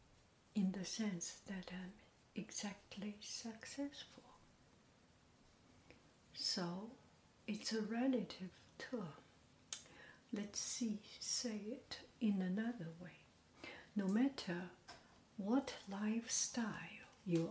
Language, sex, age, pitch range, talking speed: English, female, 60-79, 180-225 Hz, 80 wpm